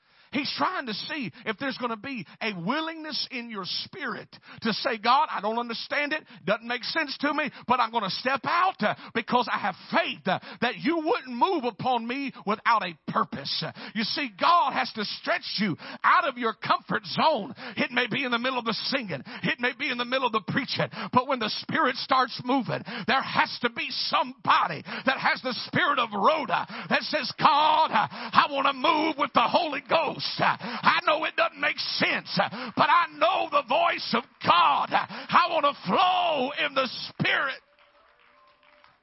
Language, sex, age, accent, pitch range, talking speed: English, male, 50-69, American, 235-315 Hz, 190 wpm